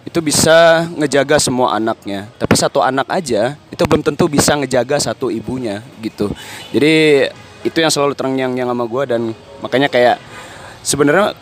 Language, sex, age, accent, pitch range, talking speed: Indonesian, male, 20-39, native, 105-140 Hz, 160 wpm